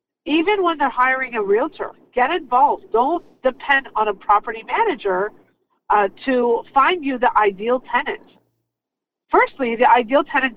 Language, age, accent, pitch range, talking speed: English, 50-69, American, 225-335 Hz, 140 wpm